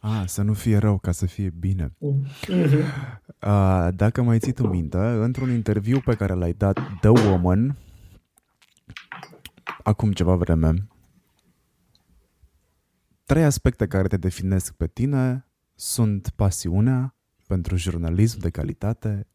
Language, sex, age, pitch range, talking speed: Romanian, male, 20-39, 90-115 Hz, 125 wpm